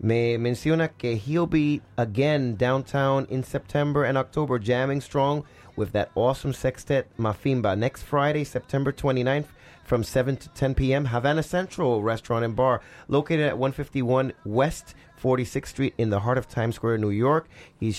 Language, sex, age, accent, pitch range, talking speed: English, male, 30-49, American, 100-135 Hz, 155 wpm